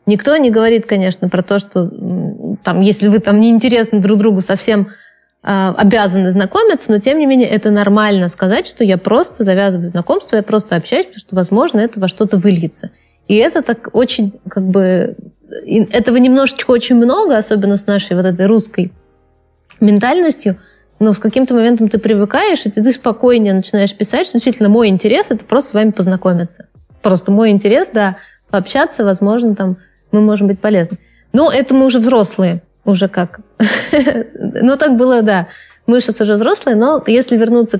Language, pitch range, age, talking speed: Russian, 195-240 Hz, 20-39, 170 wpm